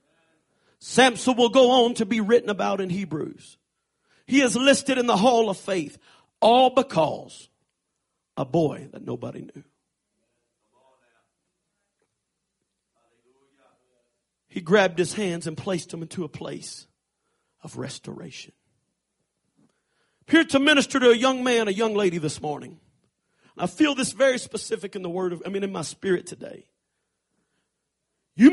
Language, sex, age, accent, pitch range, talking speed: English, male, 50-69, American, 195-280 Hz, 135 wpm